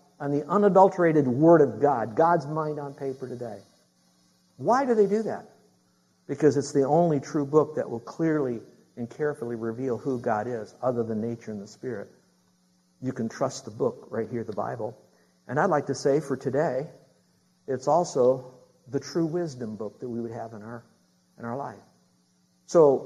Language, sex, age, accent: English, male, 50-69, American